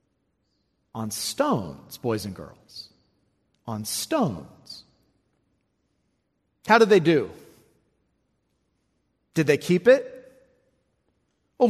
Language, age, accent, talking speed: English, 40-59, American, 80 wpm